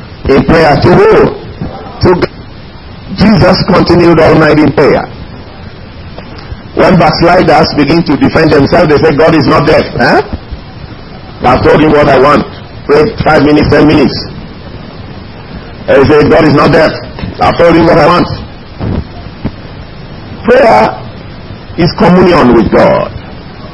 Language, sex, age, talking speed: English, male, 50-69, 135 wpm